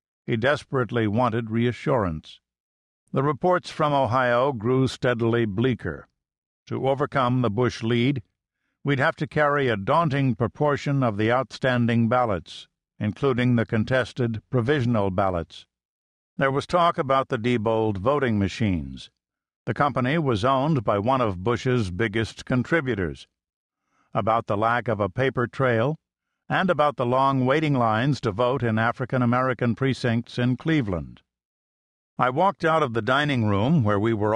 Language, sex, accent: English, male, American